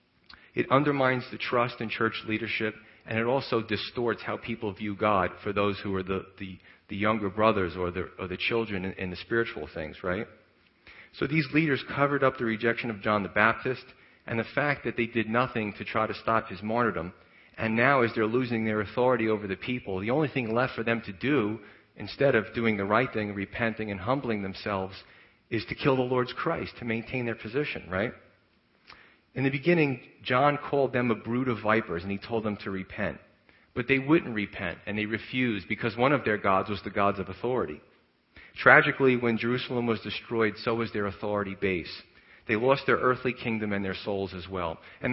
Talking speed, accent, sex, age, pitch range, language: 200 wpm, American, male, 40-59, 105-125 Hz, English